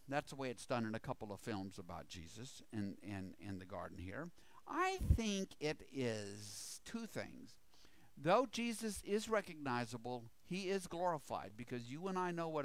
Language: English